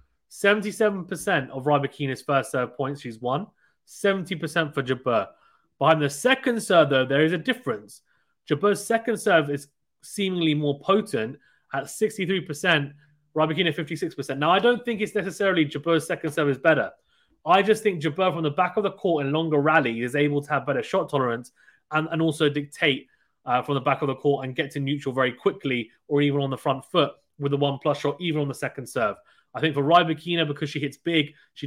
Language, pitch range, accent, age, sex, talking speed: English, 135-165 Hz, British, 20-39, male, 195 wpm